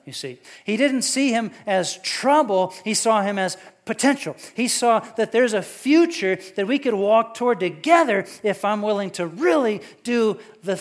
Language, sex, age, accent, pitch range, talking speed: English, male, 40-59, American, 185-260 Hz, 180 wpm